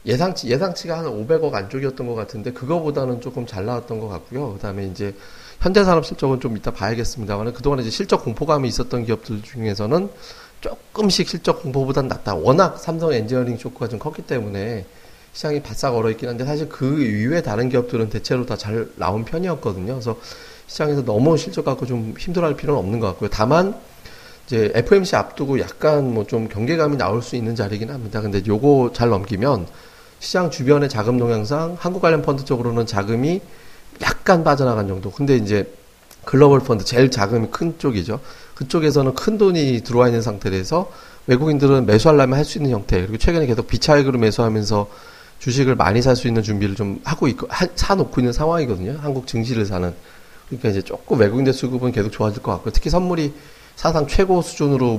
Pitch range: 110-150 Hz